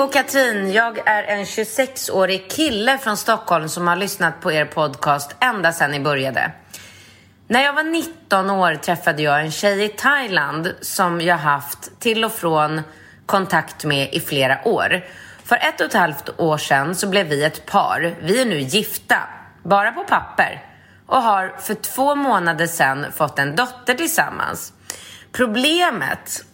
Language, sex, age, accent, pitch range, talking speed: Swedish, female, 30-49, native, 150-230 Hz, 160 wpm